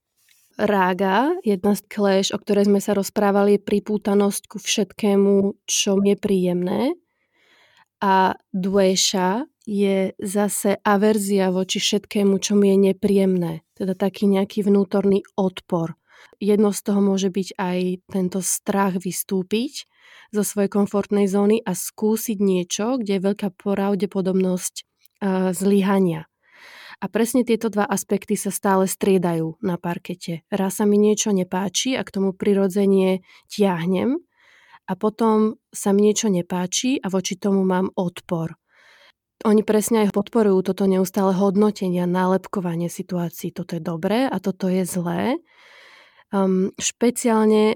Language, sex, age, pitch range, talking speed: Slovak, female, 20-39, 190-210 Hz, 130 wpm